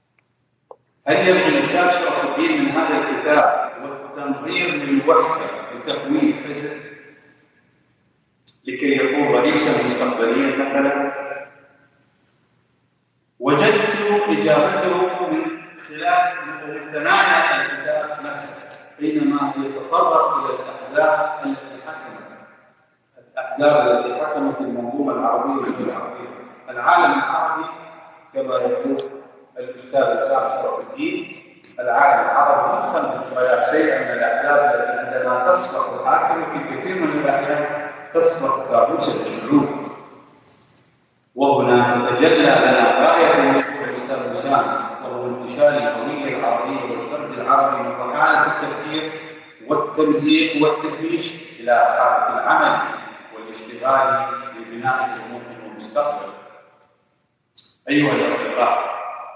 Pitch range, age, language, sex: 135-160 Hz, 50-69, English, male